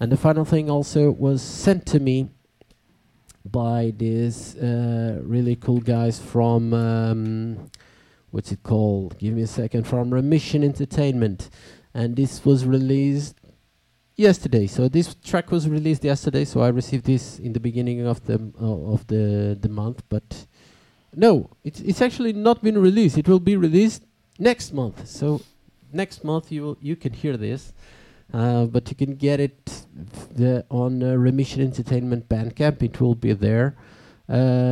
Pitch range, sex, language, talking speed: 115-145 Hz, male, English, 160 wpm